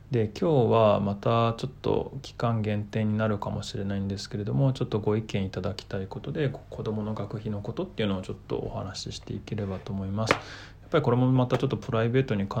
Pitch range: 100-125 Hz